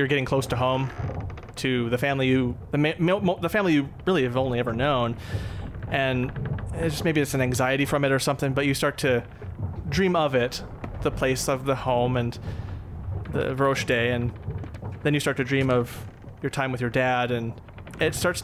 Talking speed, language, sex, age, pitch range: 200 wpm, English, male, 30-49, 115-145 Hz